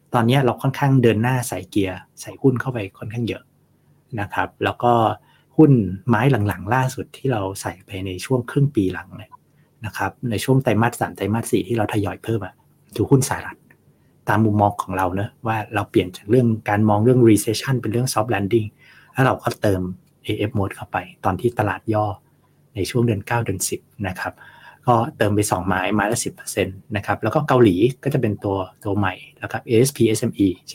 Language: Thai